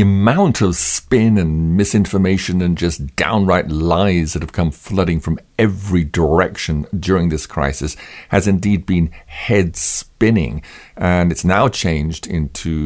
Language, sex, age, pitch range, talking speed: English, male, 50-69, 80-95 Hz, 135 wpm